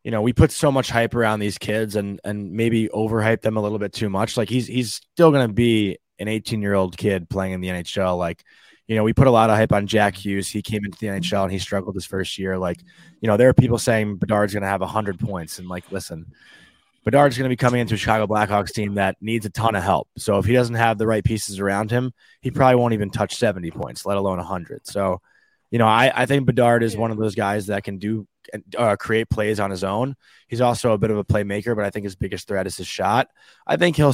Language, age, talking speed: English, 20-39, 265 wpm